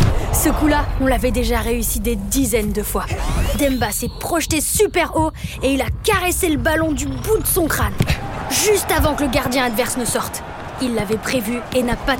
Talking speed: 195 wpm